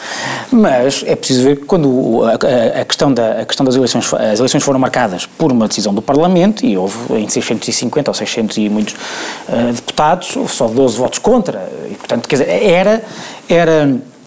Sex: male